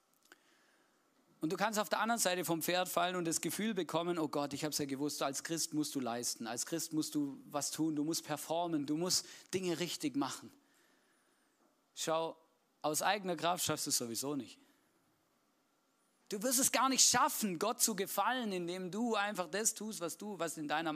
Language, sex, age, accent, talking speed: German, male, 40-59, German, 195 wpm